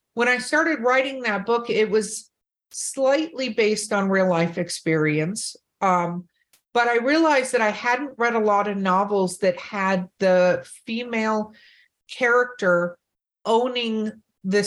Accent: American